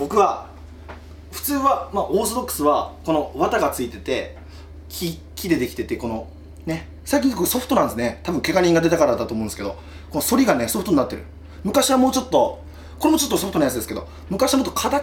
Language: Japanese